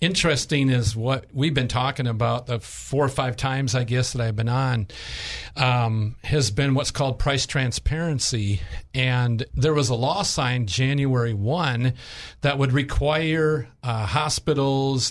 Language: English